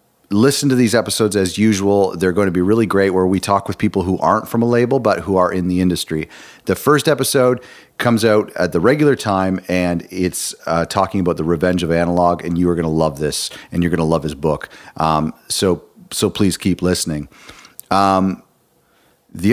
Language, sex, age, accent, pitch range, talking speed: English, male, 40-59, American, 90-110 Hz, 210 wpm